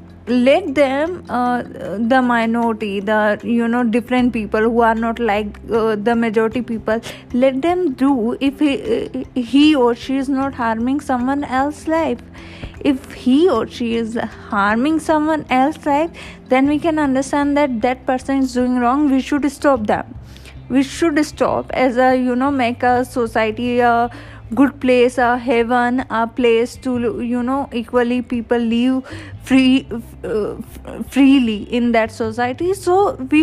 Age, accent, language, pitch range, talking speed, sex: 20-39, native, Hindi, 235-275 Hz, 155 wpm, female